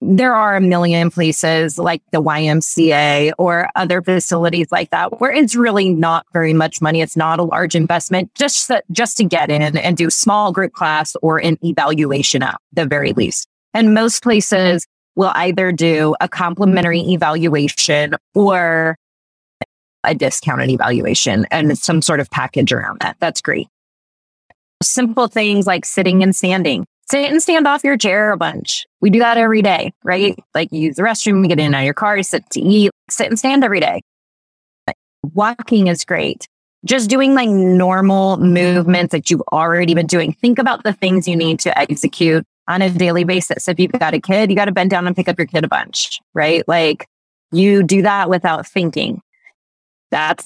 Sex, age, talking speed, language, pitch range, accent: female, 20-39, 185 wpm, English, 160-200 Hz, American